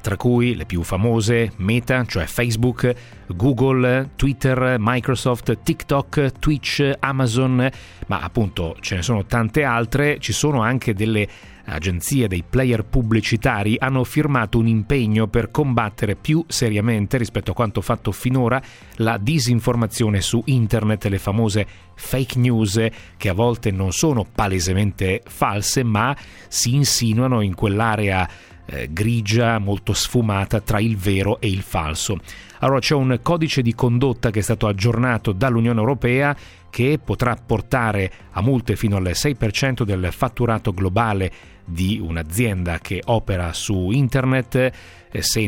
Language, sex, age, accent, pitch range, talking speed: Italian, male, 40-59, native, 100-125 Hz, 135 wpm